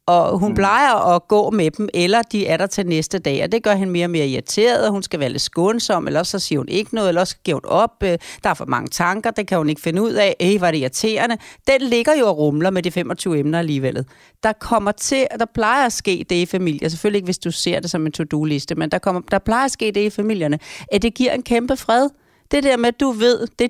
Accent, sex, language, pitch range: native, female, Danish, 175-230 Hz